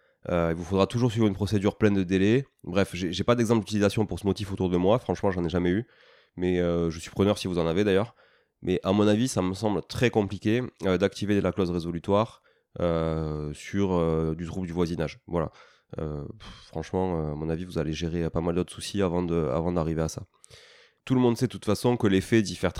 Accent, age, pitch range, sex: French, 20-39, 90-115 Hz, male